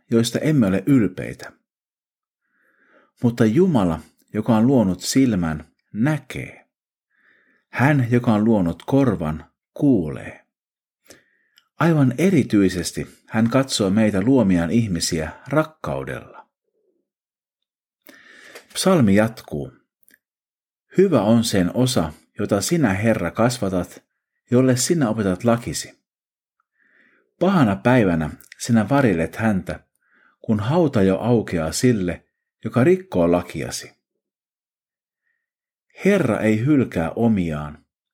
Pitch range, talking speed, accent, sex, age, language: 90-140 Hz, 90 wpm, native, male, 50-69, Finnish